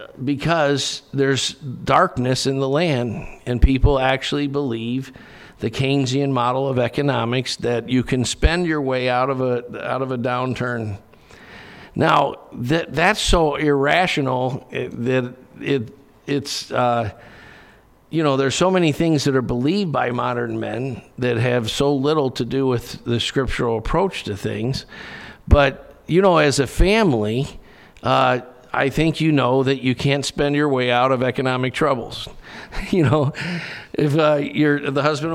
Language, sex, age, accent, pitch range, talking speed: English, male, 50-69, American, 125-155 Hz, 155 wpm